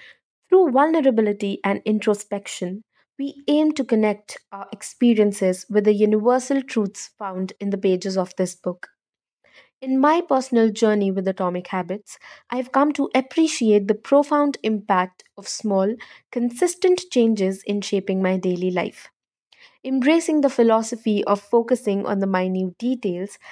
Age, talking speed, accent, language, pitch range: 20-39, 140 wpm, Indian, English, 195-260 Hz